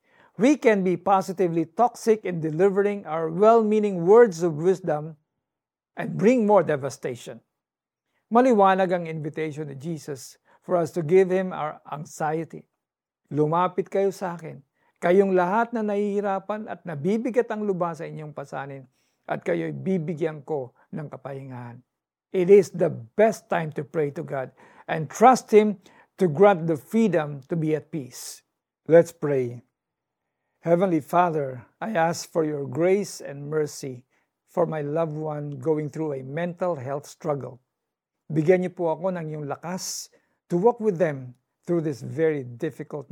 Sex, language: male, Filipino